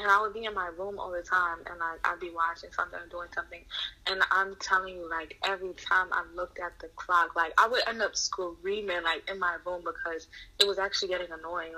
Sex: female